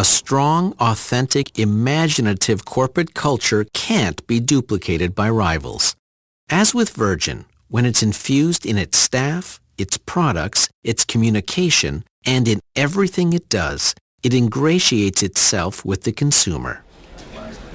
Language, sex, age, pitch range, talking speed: English, male, 50-69, 105-145 Hz, 120 wpm